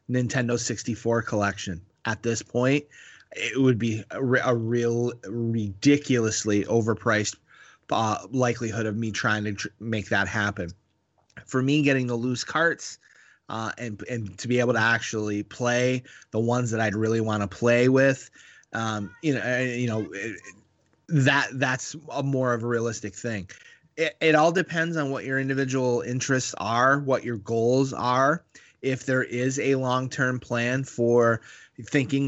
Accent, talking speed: American, 160 wpm